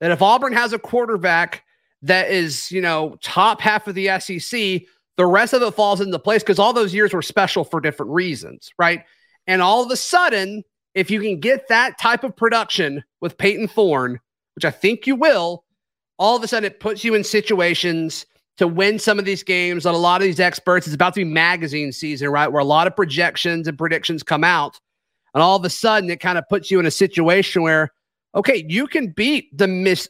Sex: male